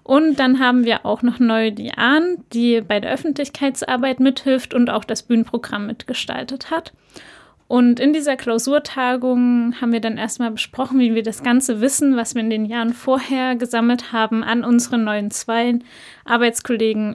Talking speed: 160 wpm